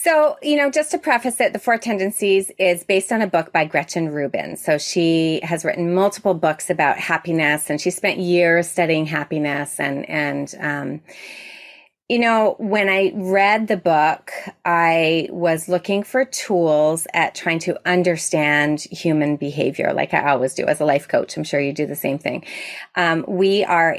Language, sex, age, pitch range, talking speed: English, female, 30-49, 165-215 Hz, 180 wpm